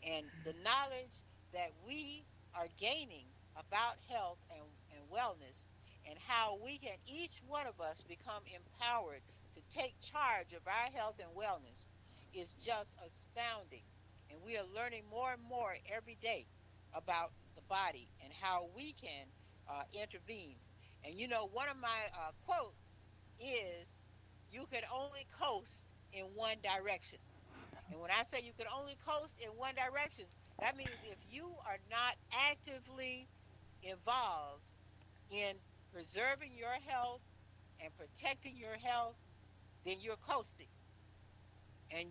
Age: 60-79